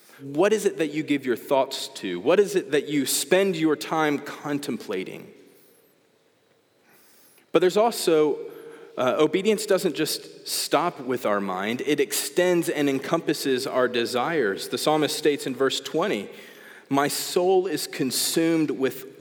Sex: male